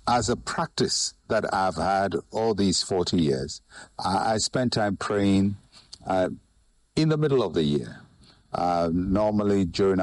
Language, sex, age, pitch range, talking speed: English, male, 60-79, 95-115 Hz, 145 wpm